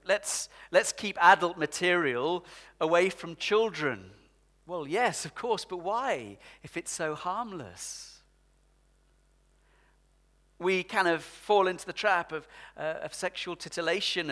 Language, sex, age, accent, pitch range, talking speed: English, male, 40-59, British, 130-185 Hz, 125 wpm